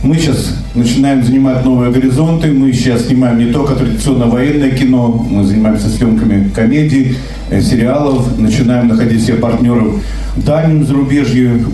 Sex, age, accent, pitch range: male, 50-69, native, 115-140 Hz